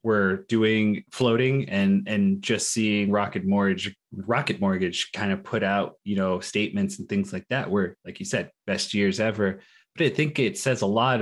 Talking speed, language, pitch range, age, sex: 195 wpm, English, 100-125 Hz, 30-49, male